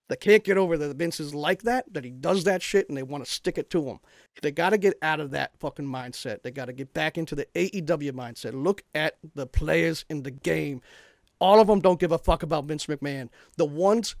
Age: 40-59